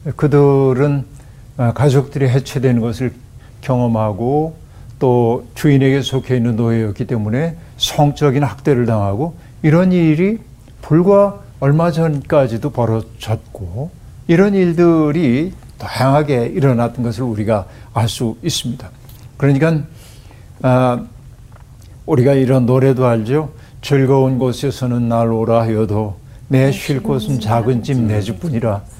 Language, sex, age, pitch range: Korean, male, 60-79, 115-145 Hz